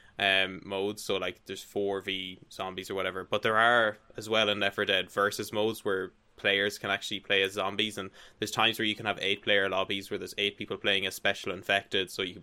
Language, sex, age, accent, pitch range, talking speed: English, male, 10-29, Irish, 95-110 Hz, 230 wpm